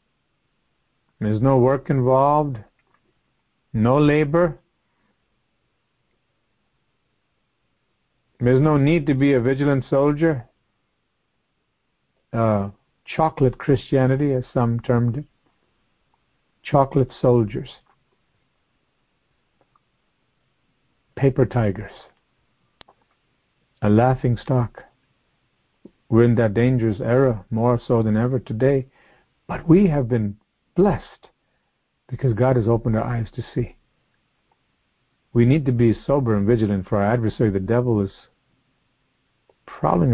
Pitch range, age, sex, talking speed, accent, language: 115-140 Hz, 50-69, male, 95 wpm, American, English